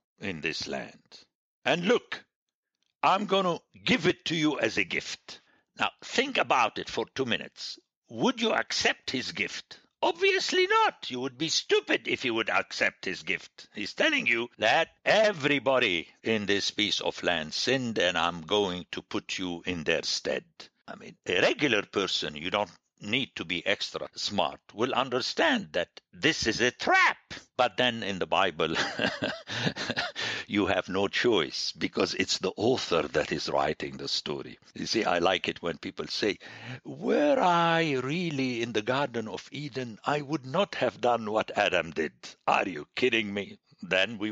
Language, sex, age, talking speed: English, male, 60-79, 170 wpm